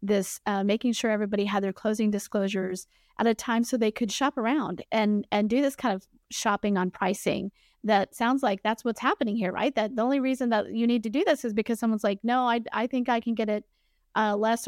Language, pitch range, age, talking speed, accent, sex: English, 205-250 Hz, 30-49, 235 wpm, American, female